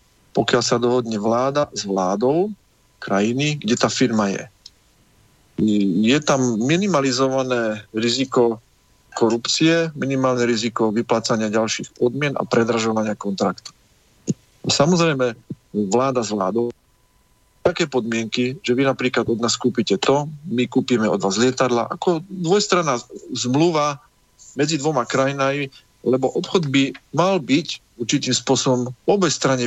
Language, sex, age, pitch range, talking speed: Slovak, male, 40-59, 115-135 Hz, 115 wpm